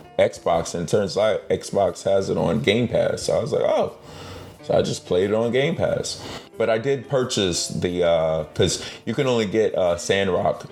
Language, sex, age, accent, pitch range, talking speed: English, male, 30-49, American, 85-110 Hz, 205 wpm